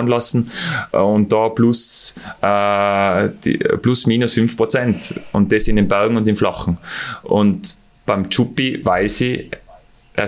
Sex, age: male, 20-39